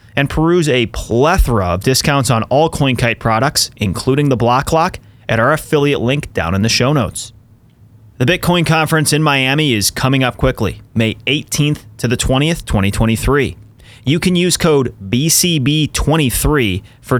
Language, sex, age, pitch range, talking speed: English, male, 30-49, 115-145 Hz, 150 wpm